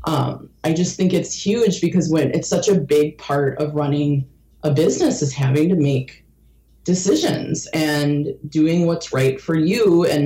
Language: English